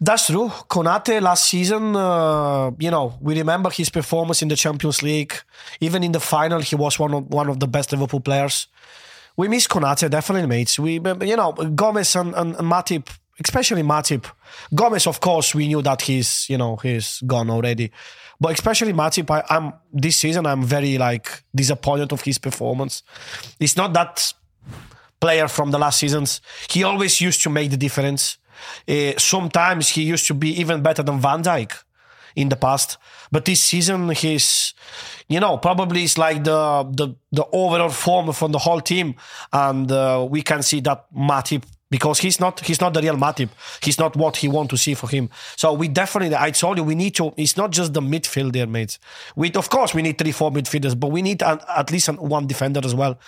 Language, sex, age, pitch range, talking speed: English, male, 20-39, 140-175 Hz, 200 wpm